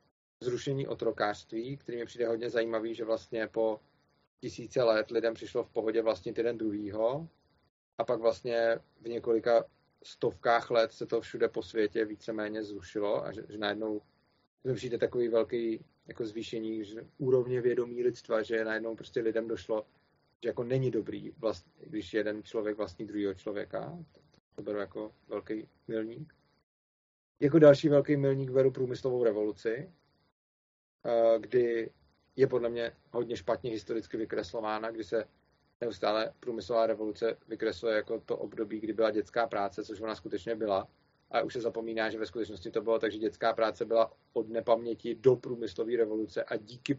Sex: male